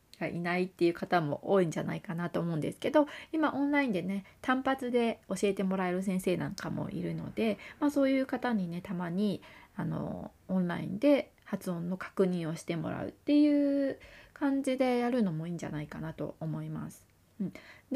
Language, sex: Japanese, female